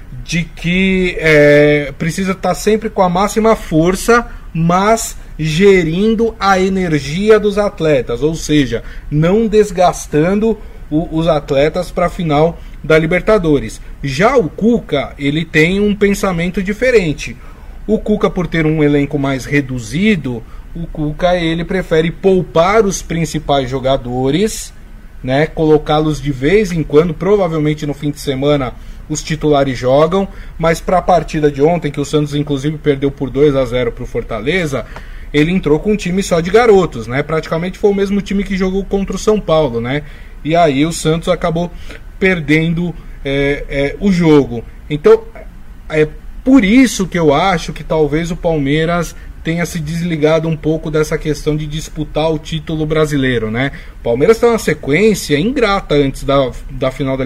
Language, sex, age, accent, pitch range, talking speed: Portuguese, male, 20-39, Brazilian, 145-190 Hz, 155 wpm